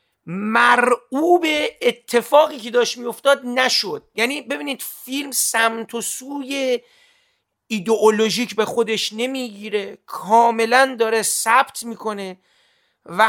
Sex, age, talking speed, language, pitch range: male, 40-59, 95 wpm, Persian, 210-270 Hz